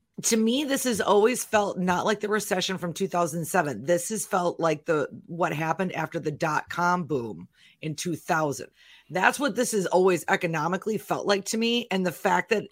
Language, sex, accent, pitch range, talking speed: English, female, American, 170-210 Hz, 190 wpm